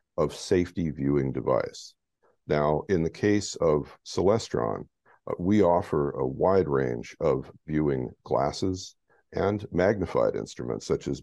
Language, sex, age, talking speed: English, male, 50-69, 130 wpm